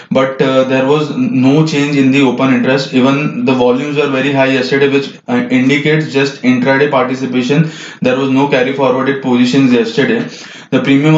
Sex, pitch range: male, 130-145 Hz